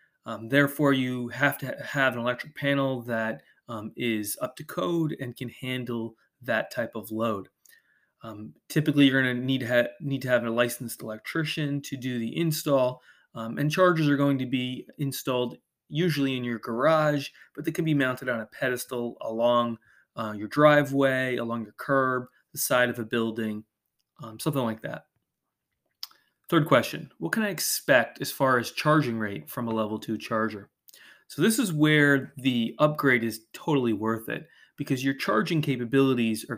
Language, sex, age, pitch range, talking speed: English, male, 20-39, 115-140 Hz, 170 wpm